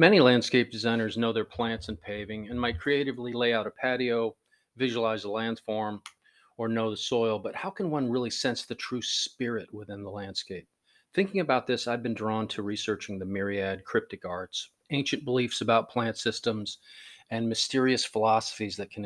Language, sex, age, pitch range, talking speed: English, male, 40-59, 100-120 Hz, 175 wpm